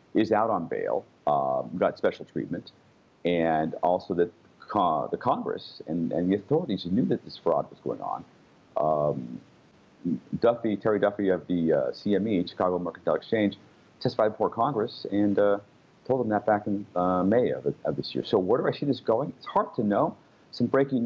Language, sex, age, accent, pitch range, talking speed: English, male, 40-59, American, 90-115 Hz, 185 wpm